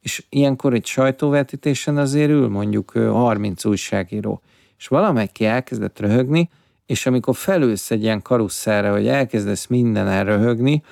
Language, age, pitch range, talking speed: Hungarian, 50-69, 110-135 Hz, 130 wpm